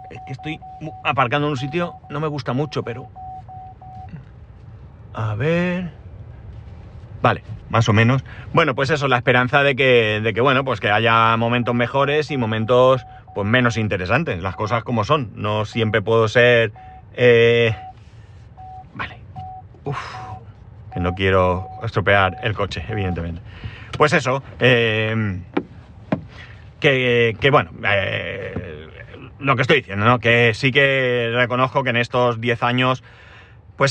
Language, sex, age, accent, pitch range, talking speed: Spanish, male, 30-49, Spanish, 110-135 Hz, 140 wpm